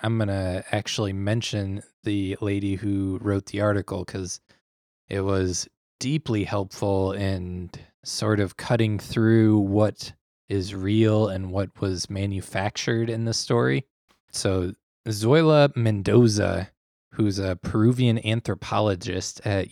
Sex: male